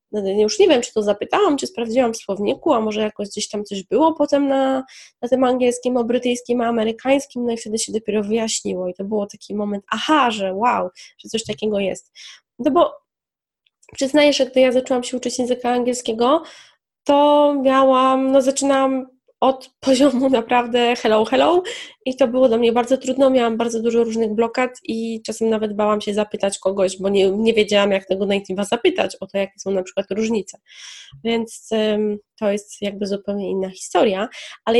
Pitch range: 215-270 Hz